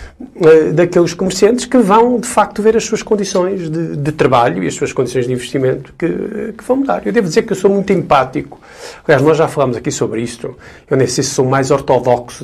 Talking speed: 215 wpm